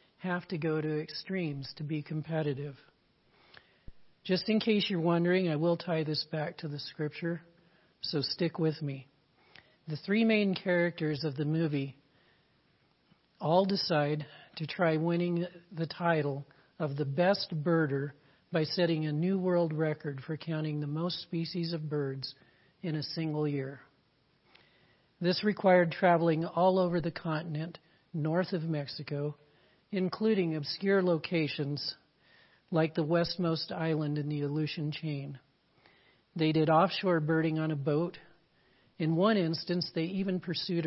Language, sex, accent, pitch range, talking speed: English, male, American, 150-175 Hz, 140 wpm